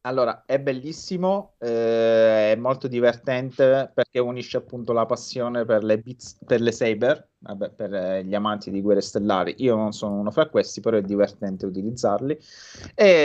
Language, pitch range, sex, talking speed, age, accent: Italian, 105-125 Hz, male, 165 wpm, 30-49, native